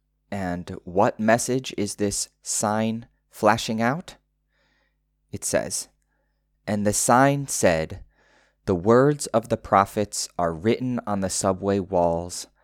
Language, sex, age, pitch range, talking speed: English, male, 20-39, 85-110 Hz, 120 wpm